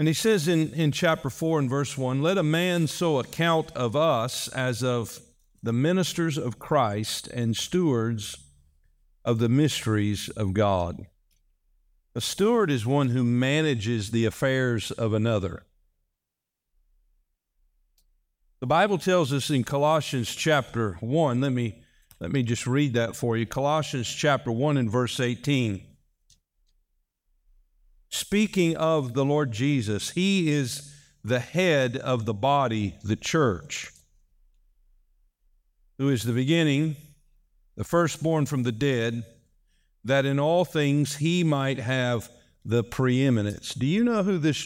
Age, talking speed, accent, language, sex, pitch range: 50-69, 135 wpm, American, English, male, 100-150 Hz